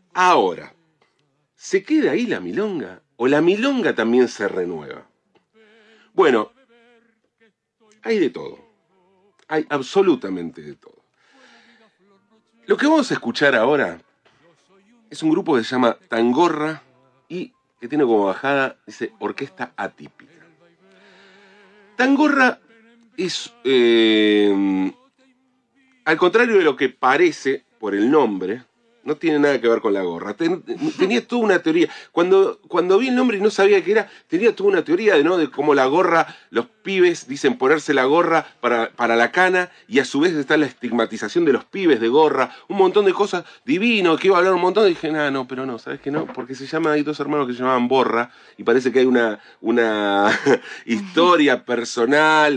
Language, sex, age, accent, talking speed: Spanish, male, 40-59, Argentinian, 165 wpm